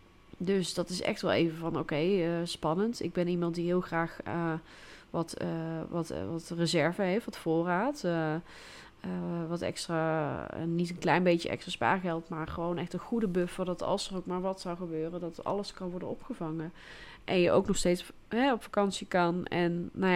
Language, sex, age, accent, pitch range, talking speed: Dutch, female, 20-39, Dutch, 170-200 Hz, 200 wpm